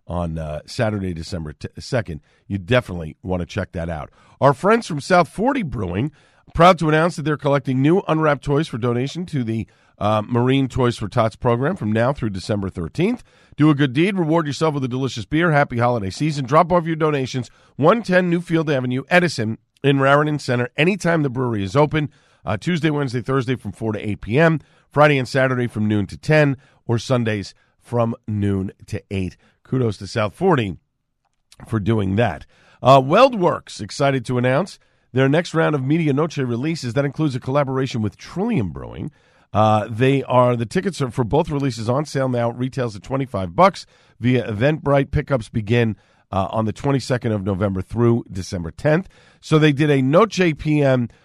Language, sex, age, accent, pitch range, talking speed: English, male, 50-69, American, 110-150 Hz, 185 wpm